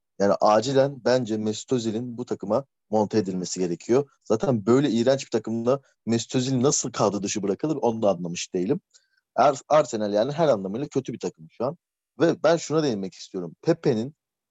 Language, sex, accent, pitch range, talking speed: Turkish, male, native, 110-145 Hz, 165 wpm